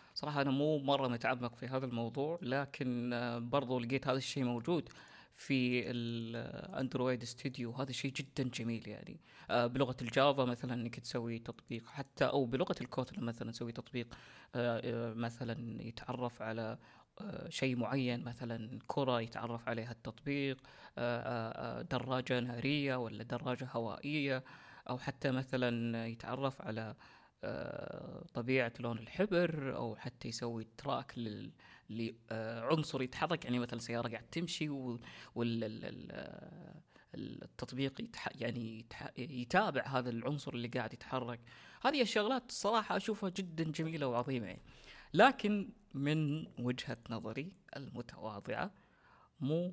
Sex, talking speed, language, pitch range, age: female, 115 wpm, Arabic, 120-140 Hz, 20-39